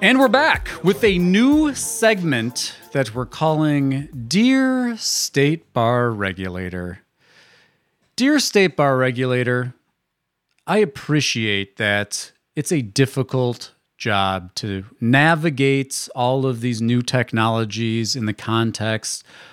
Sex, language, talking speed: male, English, 110 wpm